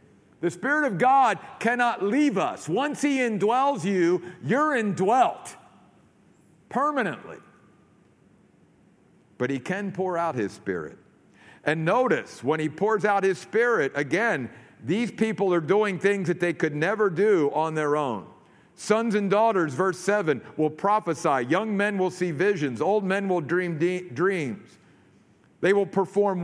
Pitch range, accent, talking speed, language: 170-210 Hz, American, 145 wpm, English